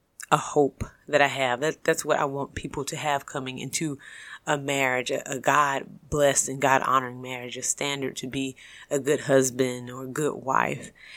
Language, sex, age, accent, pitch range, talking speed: English, female, 30-49, American, 130-160 Hz, 195 wpm